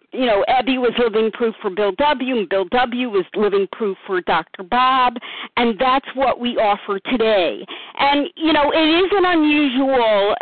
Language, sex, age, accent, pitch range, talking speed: English, female, 50-69, American, 240-305 Hz, 180 wpm